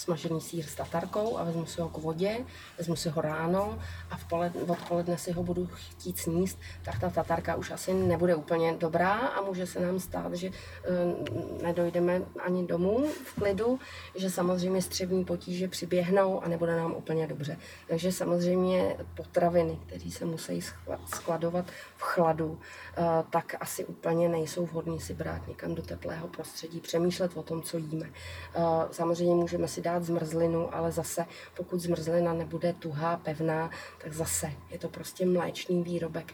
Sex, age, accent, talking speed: female, 30-49, native, 155 wpm